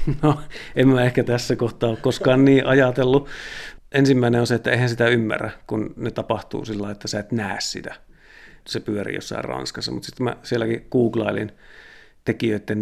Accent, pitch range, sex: native, 105-120 Hz, male